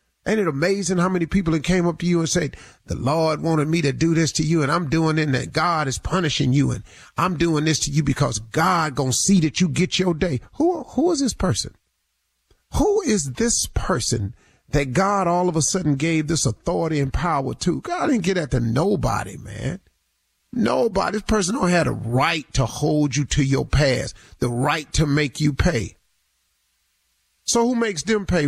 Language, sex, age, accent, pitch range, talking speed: English, male, 40-59, American, 125-180 Hz, 205 wpm